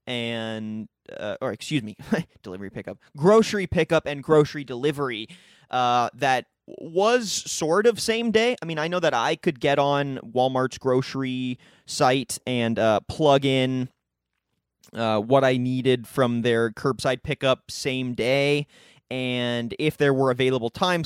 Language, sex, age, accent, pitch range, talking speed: English, male, 20-39, American, 120-160 Hz, 145 wpm